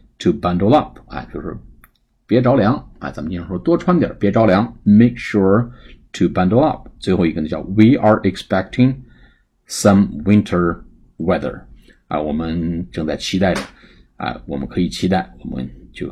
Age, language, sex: 50-69, Chinese, male